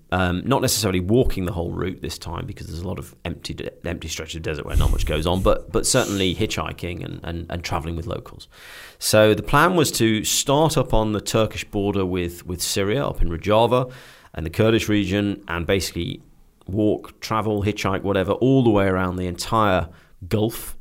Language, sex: English, male